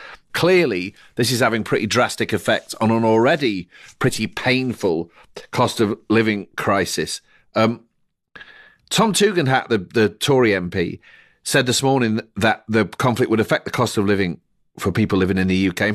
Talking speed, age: 160 wpm, 40-59